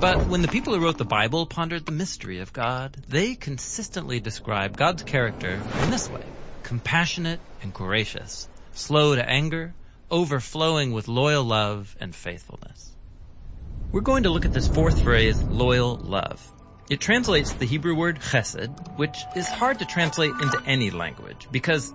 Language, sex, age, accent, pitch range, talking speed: English, male, 40-59, American, 110-165 Hz, 160 wpm